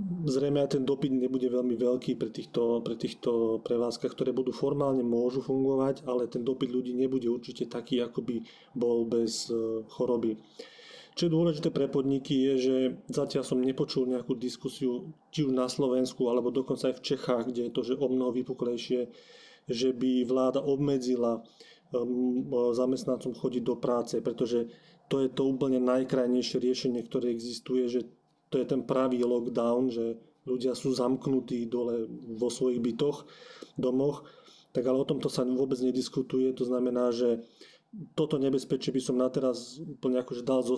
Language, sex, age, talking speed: Slovak, male, 30-49, 155 wpm